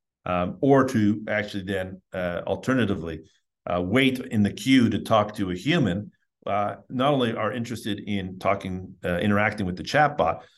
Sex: male